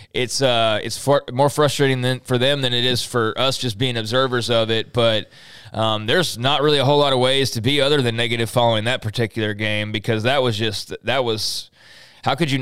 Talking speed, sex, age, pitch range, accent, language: 235 wpm, male, 20-39, 115-145 Hz, American, English